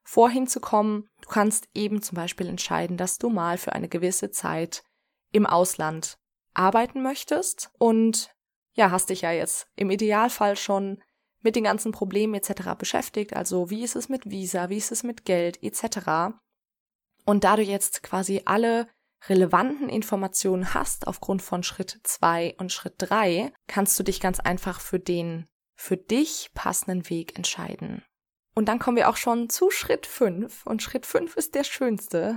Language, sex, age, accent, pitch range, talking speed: German, female, 20-39, German, 185-225 Hz, 165 wpm